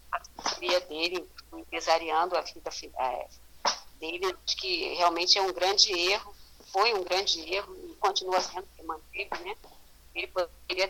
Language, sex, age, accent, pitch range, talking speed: Portuguese, female, 40-59, Brazilian, 180-275 Hz, 125 wpm